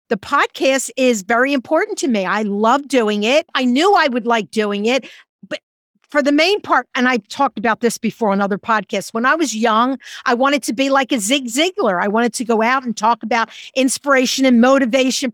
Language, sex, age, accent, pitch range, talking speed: English, female, 50-69, American, 235-315 Hz, 215 wpm